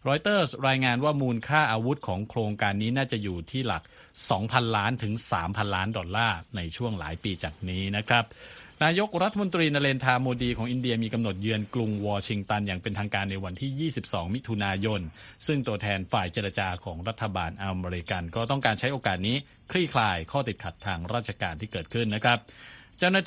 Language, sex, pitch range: Thai, male, 100-125 Hz